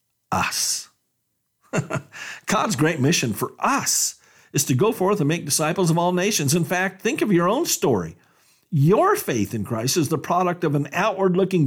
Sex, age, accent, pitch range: male, 50-69, American, 130-190 Hz